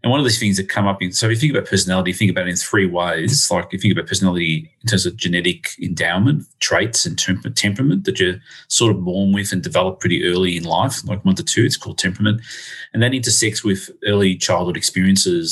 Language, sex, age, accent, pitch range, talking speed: English, male, 30-49, Australian, 90-115 Hz, 240 wpm